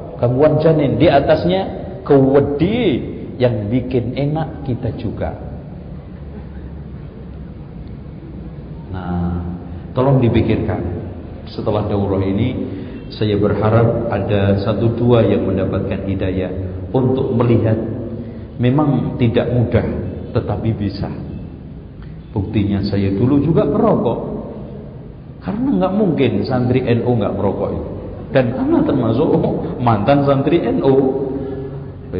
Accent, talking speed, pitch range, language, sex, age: native, 95 wpm, 95-140 Hz, Indonesian, male, 50-69